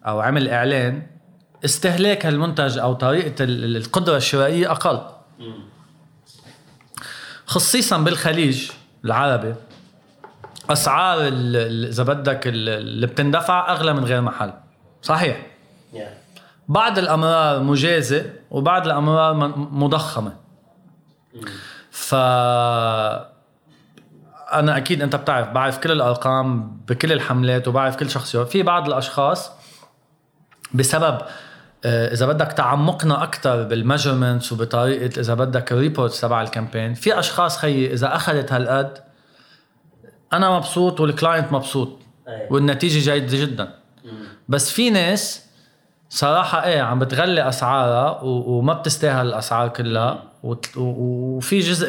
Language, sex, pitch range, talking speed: Arabic, male, 125-160 Hz, 100 wpm